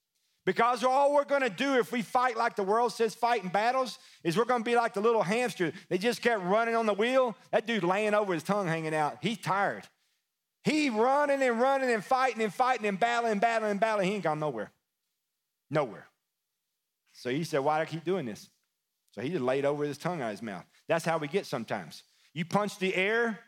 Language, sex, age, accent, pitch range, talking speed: English, male, 40-59, American, 160-235 Hz, 225 wpm